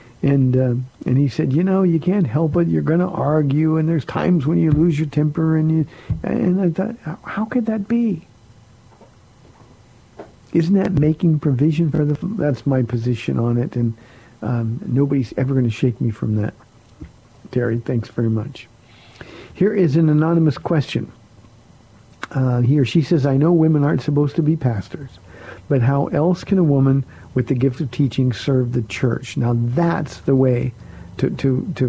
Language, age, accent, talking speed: English, 50-69, American, 185 wpm